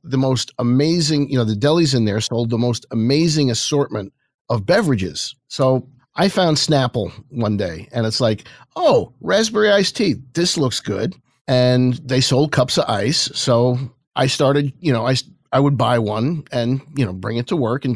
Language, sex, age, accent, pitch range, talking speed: English, male, 40-59, American, 120-155 Hz, 185 wpm